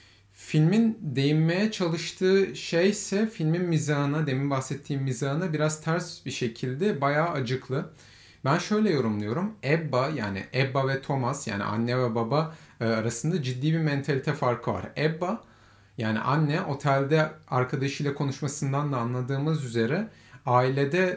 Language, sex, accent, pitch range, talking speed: Turkish, male, native, 120-160 Hz, 125 wpm